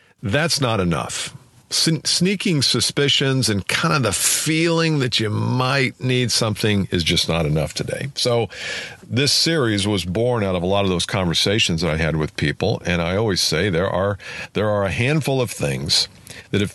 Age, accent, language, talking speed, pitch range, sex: 50-69, American, English, 185 wpm, 90-125 Hz, male